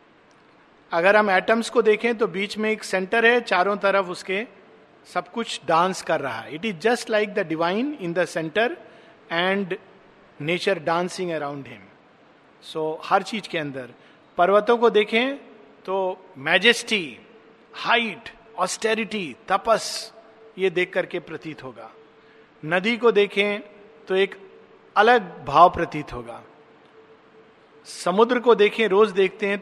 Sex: male